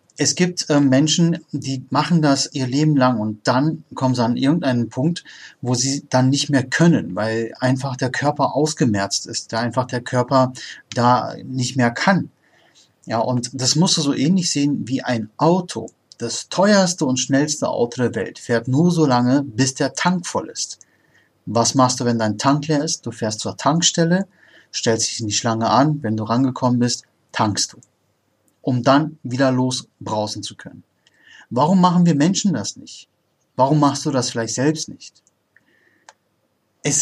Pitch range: 125-155 Hz